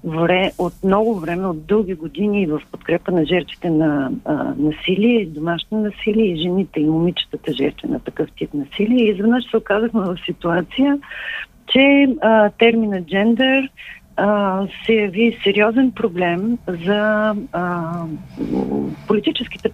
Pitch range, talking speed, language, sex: 175-225 Hz, 130 wpm, Bulgarian, female